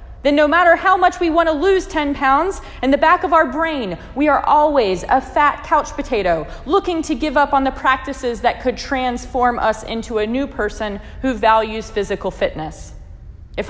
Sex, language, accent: female, English, American